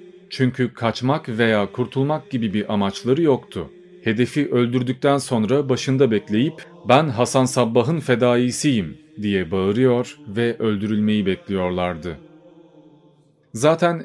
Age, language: 40-59, Turkish